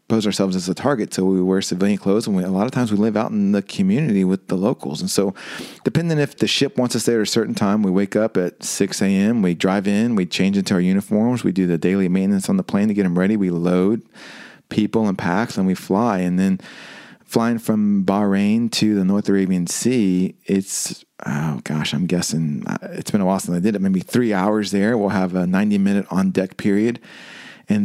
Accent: American